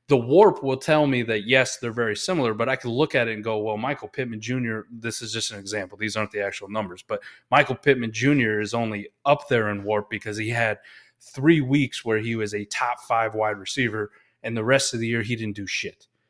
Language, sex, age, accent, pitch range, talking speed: English, male, 30-49, American, 110-140 Hz, 240 wpm